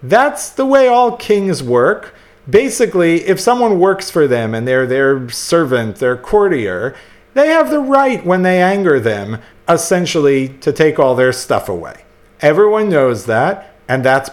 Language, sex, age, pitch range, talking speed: English, male, 40-59, 125-185 Hz, 160 wpm